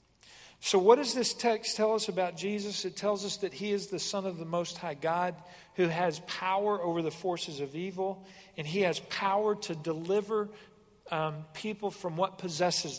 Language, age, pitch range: English, 40-59, 165-205 Hz